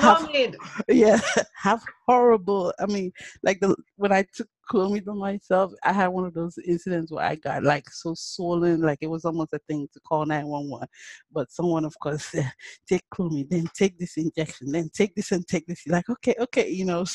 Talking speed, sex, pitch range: 210 wpm, female, 150-195 Hz